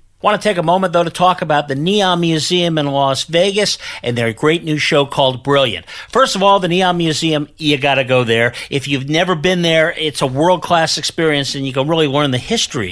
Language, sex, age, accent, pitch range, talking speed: English, male, 50-69, American, 135-180 Hz, 225 wpm